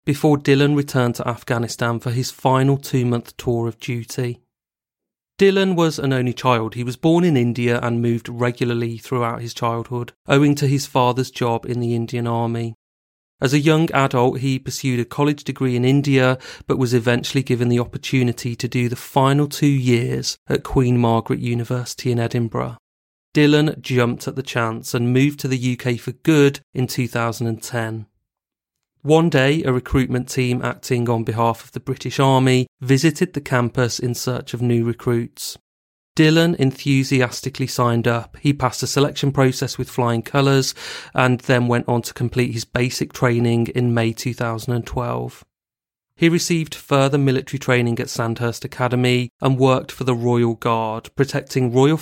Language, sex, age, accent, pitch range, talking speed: English, male, 30-49, British, 120-135 Hz, 160 wpm